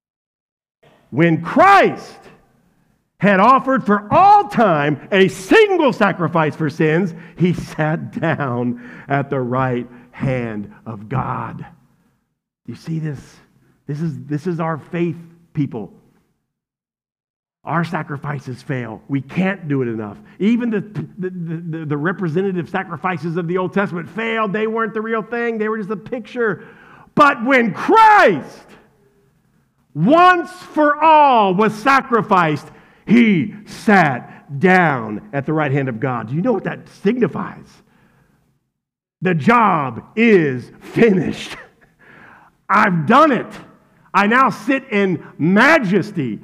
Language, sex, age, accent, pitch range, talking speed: English, male, 50-69, American, 155-230 Hz, 125 wpm